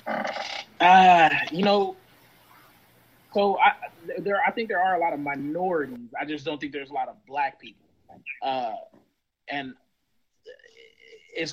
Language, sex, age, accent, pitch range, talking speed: English, male, 20-39, American, 150-190 Hz, 140 wpm